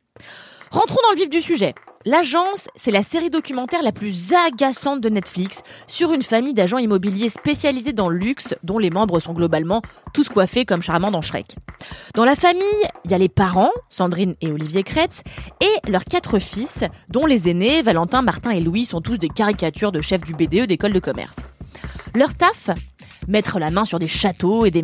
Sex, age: female, 20-39